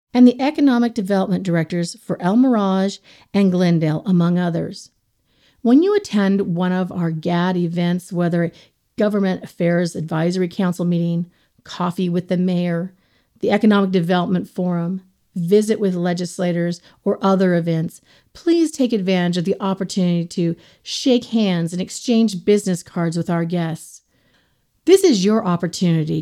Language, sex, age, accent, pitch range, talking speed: English, female, 40-59, American, 175-215 Hz, 140 wpm